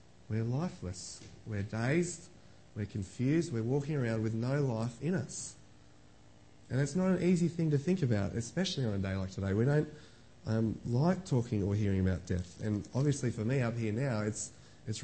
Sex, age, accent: male, 30-49, Australian